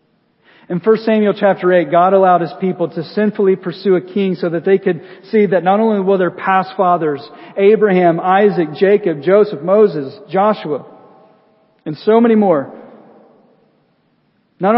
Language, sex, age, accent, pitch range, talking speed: English, male, 40-59, American, 185-215 Hz, 150 wpm